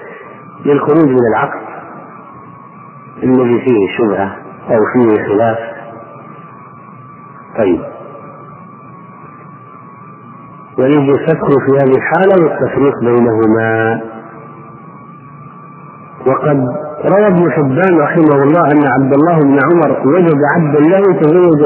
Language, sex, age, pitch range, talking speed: Arabic, male, 50-69, 130-160 Hz, 85 wpm